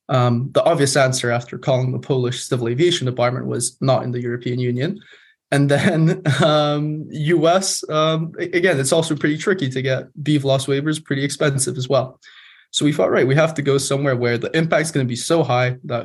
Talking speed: 200 wpm